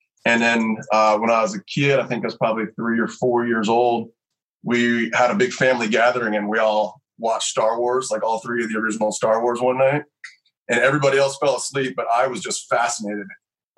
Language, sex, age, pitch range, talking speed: English, male, 30-49, 105-130 Hz, 220 wpm